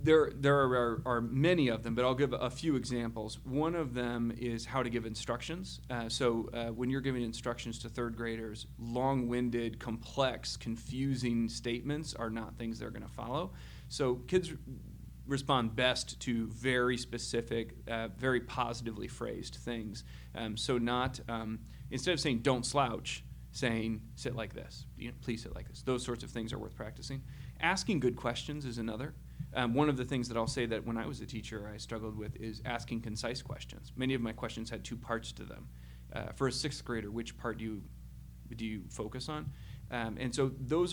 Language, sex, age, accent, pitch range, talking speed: English, male, 30-49, American, 110-130 Hz, 195 wpm